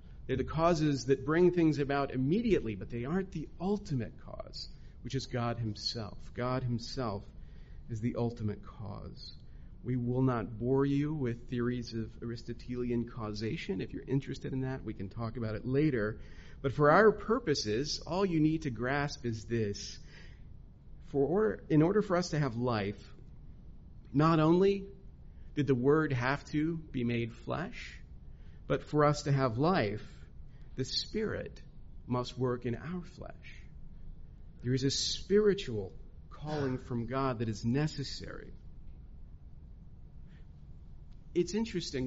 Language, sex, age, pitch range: English, male, 40-59, 115-145 Hz